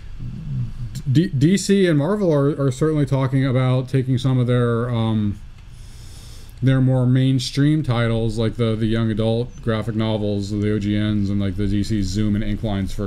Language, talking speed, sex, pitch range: English, 160 wpm, male, 105-130 Hz